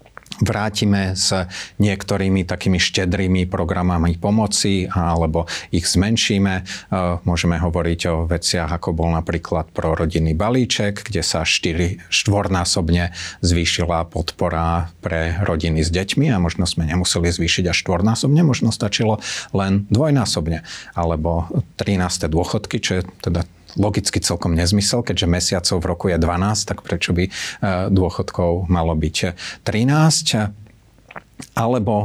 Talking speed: 120 wpm